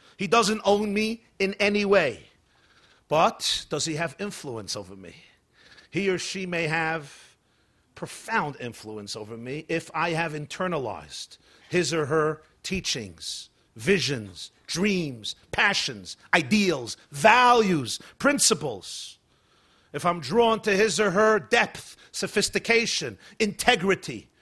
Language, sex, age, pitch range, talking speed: English, male, 40-59, 170-220 Hz, 115 wpm